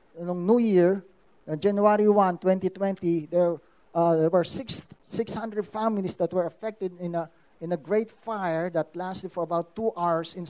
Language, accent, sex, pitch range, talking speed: English, Filipino, male, 175-215 Hz, 165 wpm